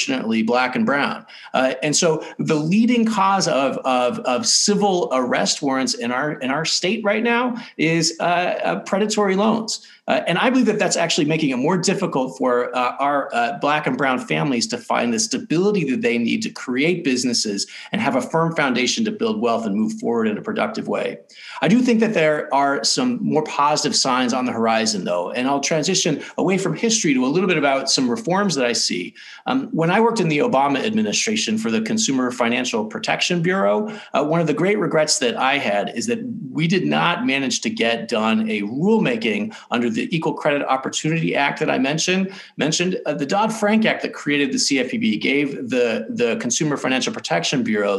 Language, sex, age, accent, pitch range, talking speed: English, male, 40-59, American, 140-225 Hz, 200 wpm